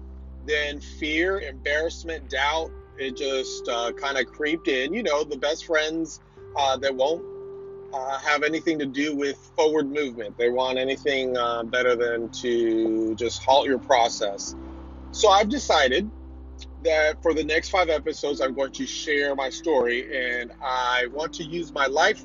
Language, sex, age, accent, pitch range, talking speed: English, male, 30-49, American, 120-160 Hz, 160 wpm